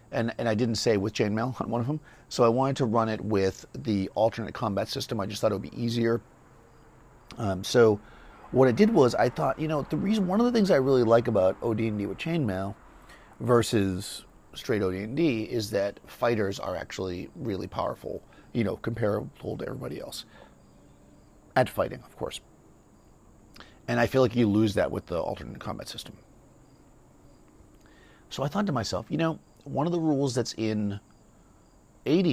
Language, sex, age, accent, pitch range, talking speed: English, male, 40-59, American, 100-120 Hz, 180 wpm